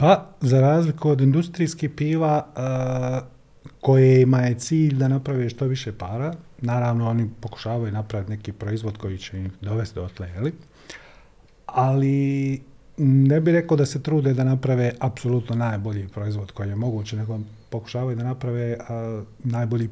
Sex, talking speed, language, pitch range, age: male, 140 wpm, Croatian, 110-135 Hz, 40-59